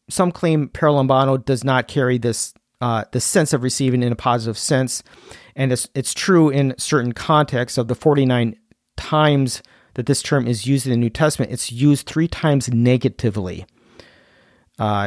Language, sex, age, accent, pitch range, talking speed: English, male, 40-59, American, 115-145 Hz, 170 wpm